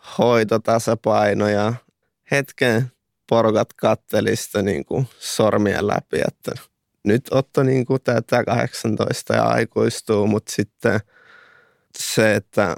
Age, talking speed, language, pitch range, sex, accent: 20-39, 90 wpm, Finnish, 105-115 Hz, male, native